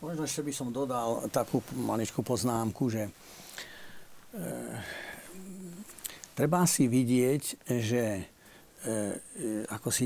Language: Slovak